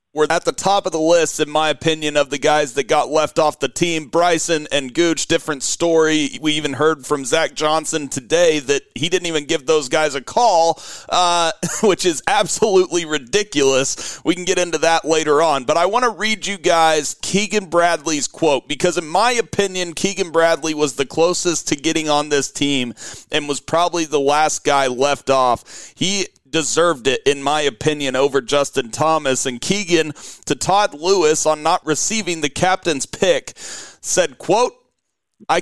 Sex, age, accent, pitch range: male, 40-59, American, 150-180 Hz